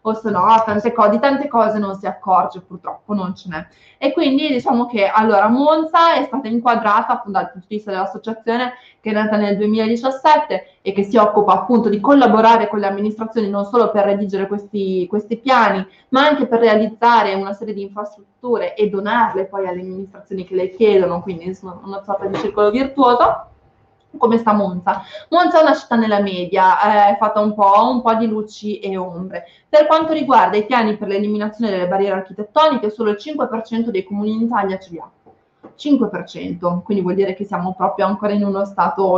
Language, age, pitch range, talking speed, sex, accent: Italian, 20-39, 195-235 Hz, 185 wpm, female, native